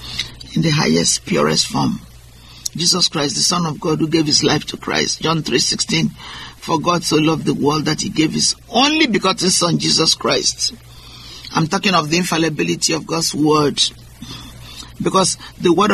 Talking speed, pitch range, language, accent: 175 wpm, 120-200 Hz, English, Nigerian